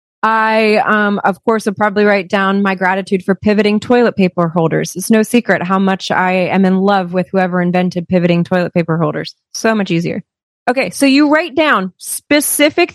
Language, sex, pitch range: English, female, 195-260 Hz